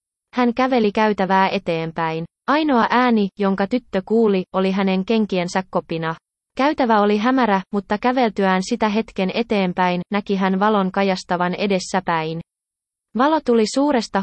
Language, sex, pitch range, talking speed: Finnish, female, 185-230 Hz, 120 wpm